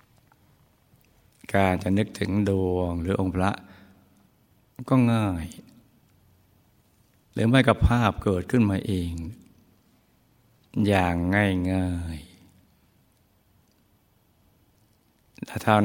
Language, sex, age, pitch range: Thai, male, 60-79, 90-105 Hz